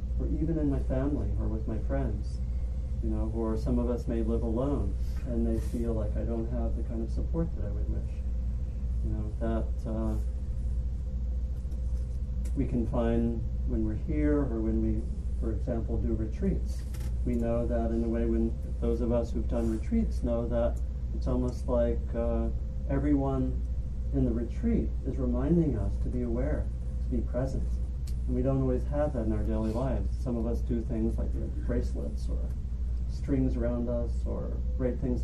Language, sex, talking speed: English, male, 180 wpm